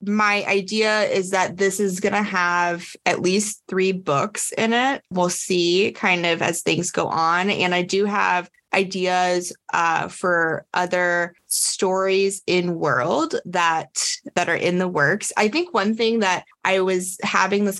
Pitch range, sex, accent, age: 175-220 Hz, female, American, 20-39